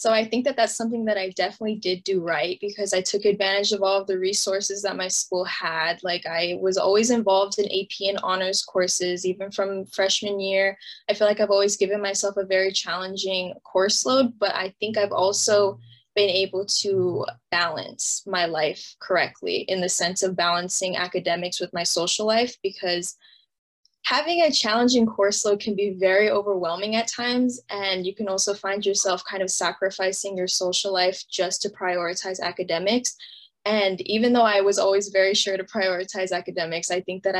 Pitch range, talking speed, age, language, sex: 185-210 Hz, 185 wpm, 10-29, English, female